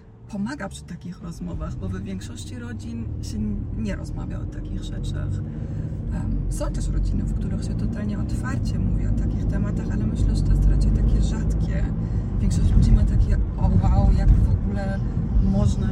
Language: Polish